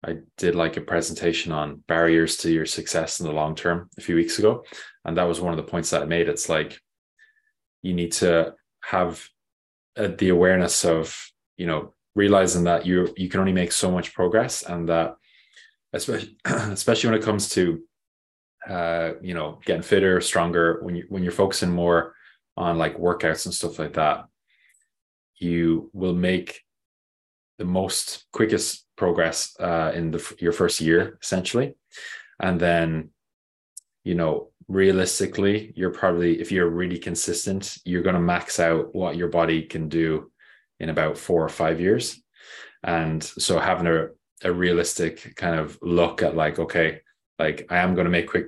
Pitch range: 85-95 Hz